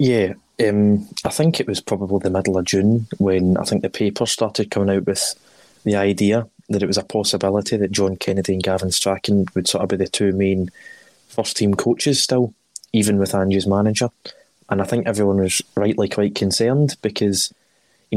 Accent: British